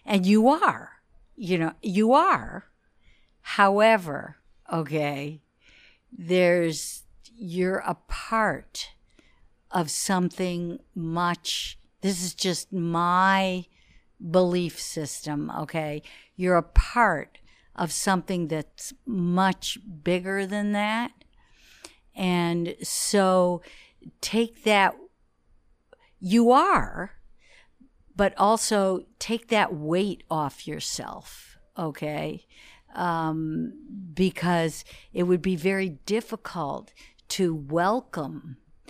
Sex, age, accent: female, 60-79, American